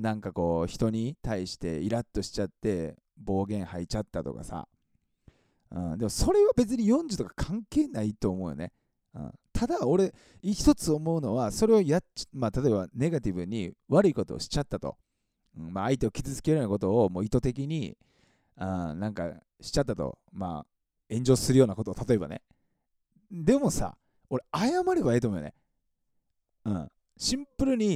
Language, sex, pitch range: Japanese, male, 95-155 Hz